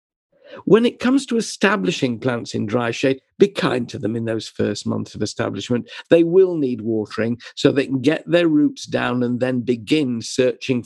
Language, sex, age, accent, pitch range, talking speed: English, male, 50-69, British, 120-165 Hz, 190 wpm